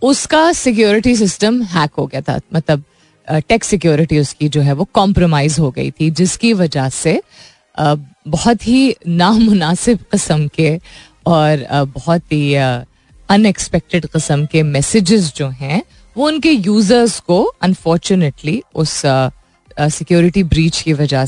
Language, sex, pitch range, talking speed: Hindi, female, 150-210 Hz, 125 wpm